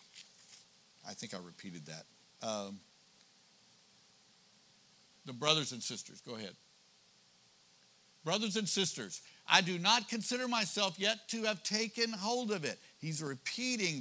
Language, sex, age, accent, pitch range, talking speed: English, male, 60-79, American, 115-190 Hz, 125 wpm